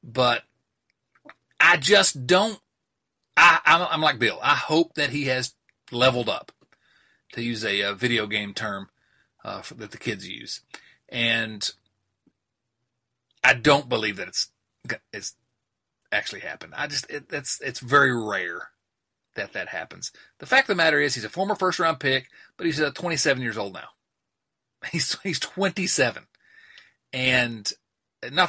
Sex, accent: male, American